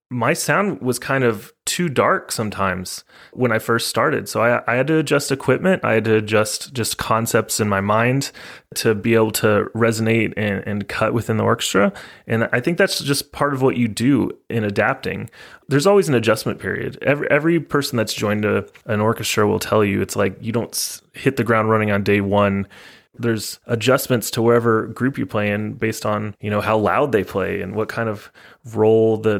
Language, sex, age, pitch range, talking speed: English, male, 30-49, 105-125 Hz, 200 wpm